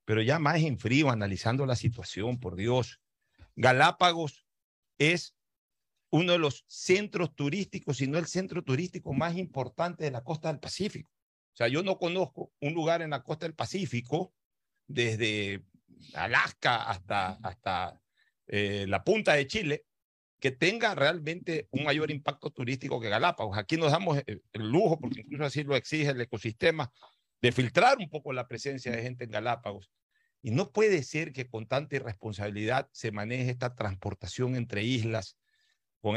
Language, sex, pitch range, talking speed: Spanish, male, 120-170 Hz, 160 wpm